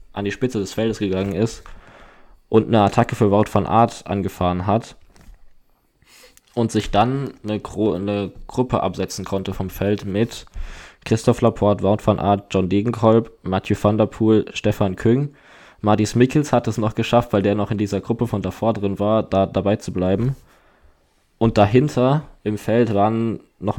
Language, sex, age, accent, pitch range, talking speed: German, male, 20-39, German, 100-110 Hz, 170 wpm